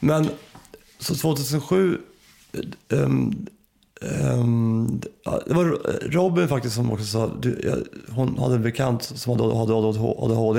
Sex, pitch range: male, 115-135 Hz